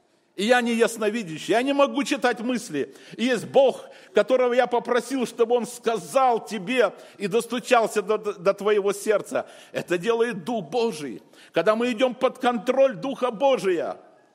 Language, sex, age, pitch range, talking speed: Russian, male, 50-69, 190-245 Hz, 145 wpm